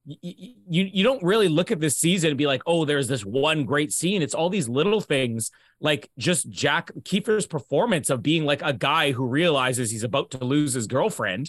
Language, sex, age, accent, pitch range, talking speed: English, male, 30-49, American, 140-190 Hz, 210 wpm